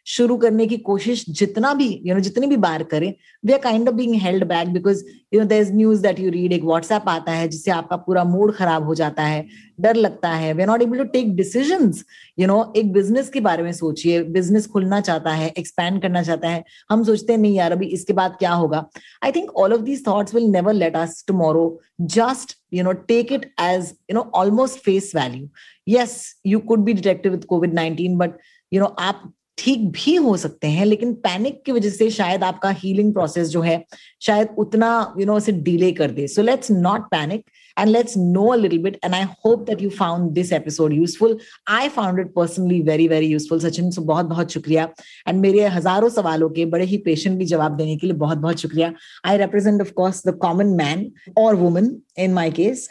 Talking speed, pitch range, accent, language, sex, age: 175 wpm, 170-220 Hz, native, Hindi, female, 30-49